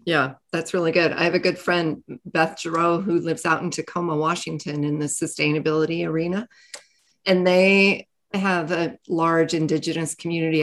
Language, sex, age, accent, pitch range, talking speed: English, female, 40-59, American, 160-195 Hz, 160 wpm